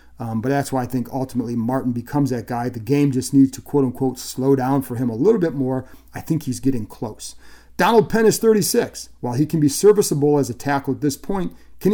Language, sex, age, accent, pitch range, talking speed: English, male, 40-59, American, 130-165 Hz, 235 wpm